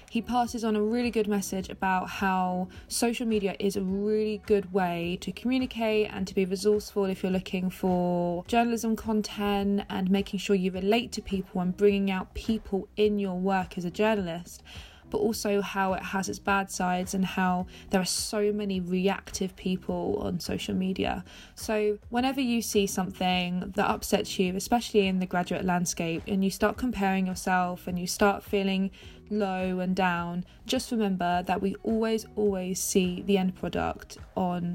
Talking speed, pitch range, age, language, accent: 175 wpm, 185-215 Hz, 20-39, English, British